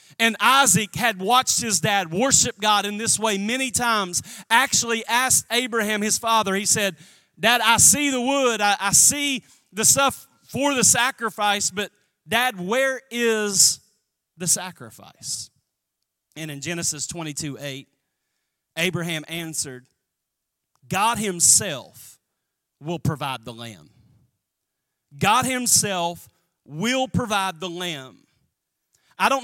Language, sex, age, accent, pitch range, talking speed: English, male, 40-59, American, 170-235 Hz, 120 wpm